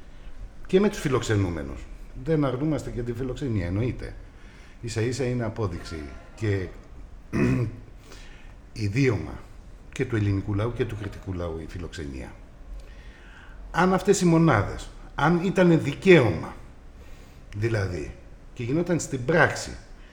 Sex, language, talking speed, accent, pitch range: male, Greek, 115 wpm, native, 95-140 Hz